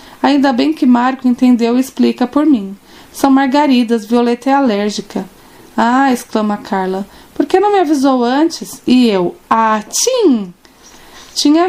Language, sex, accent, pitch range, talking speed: Portuguese, female, Brazilian, 225-295 Hz, 145 wpm